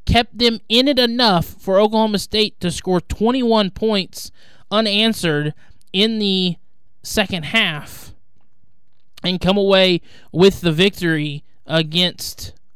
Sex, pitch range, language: male, 155-190 Hz, English